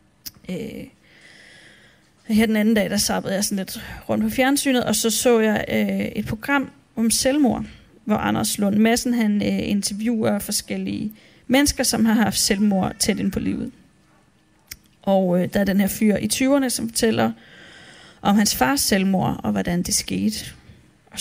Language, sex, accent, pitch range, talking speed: Danish, female, native, 200-235 Hz, 155 wpm